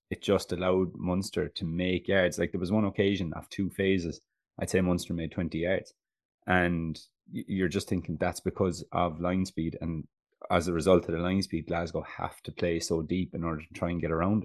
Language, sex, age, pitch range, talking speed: English, male, 20-39, 85-95 Hz, 210 wpm